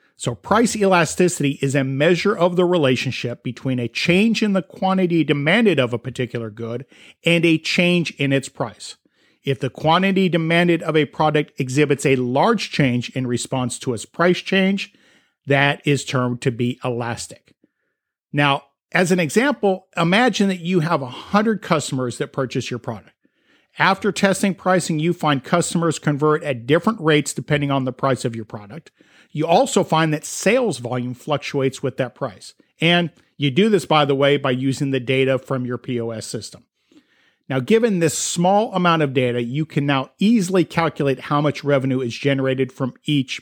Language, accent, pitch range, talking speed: English, American, 130-175 Hz, 170 wpm